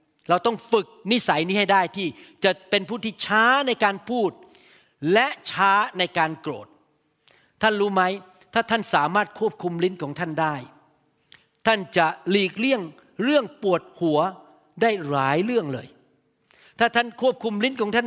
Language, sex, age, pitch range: Thai, male, 60-79, 180-235 Hz